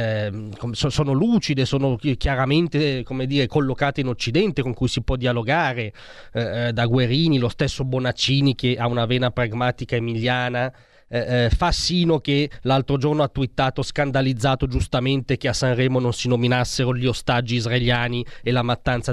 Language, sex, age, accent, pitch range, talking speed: Italian, male, 30-49, native, 125-165 Hz, 145 wpm